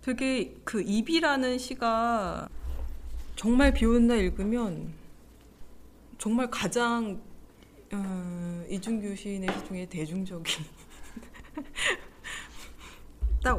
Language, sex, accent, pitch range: Korean, female, native, 155-215 Hz